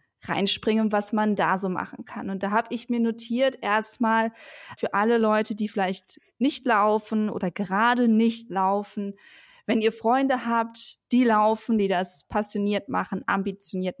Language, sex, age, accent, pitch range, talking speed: German, female, 20-39, German, 185-220 Hz, 155 wpm